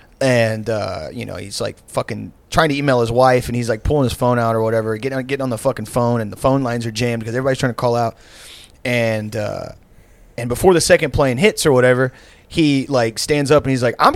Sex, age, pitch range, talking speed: male, 30-49, 115-140 Hz, 245 wpm